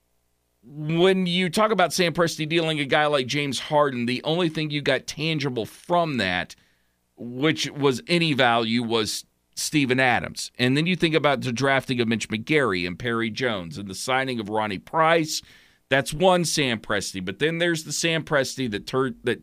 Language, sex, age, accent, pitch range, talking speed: English, male, 40-59, American, 120-160 Hz, 180 wpm